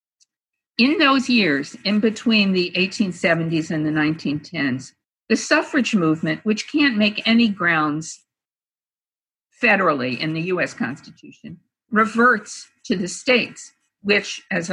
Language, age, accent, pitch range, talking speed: English, 50-69, American, 170-225 Hz, 120 wpm